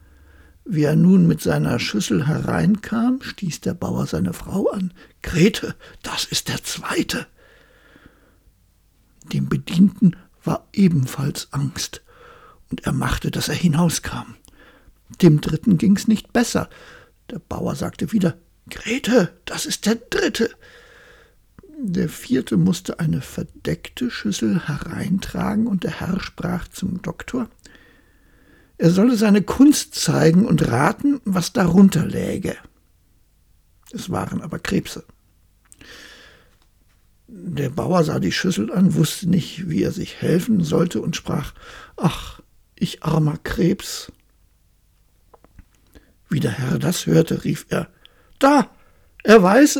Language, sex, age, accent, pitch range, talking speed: German, male, 60-79, German, 150-205 Hz, 120 wpm